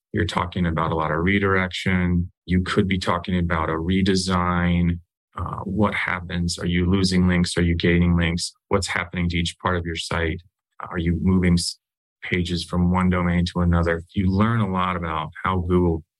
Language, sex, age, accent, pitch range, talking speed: English, male, 30-49, American, 85-100 Hz, 180 wpm